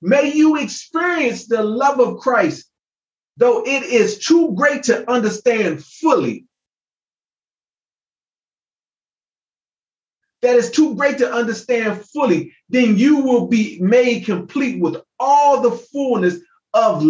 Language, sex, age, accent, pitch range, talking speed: English, male, 30-49, American, 215-285 Hz, 115 wpm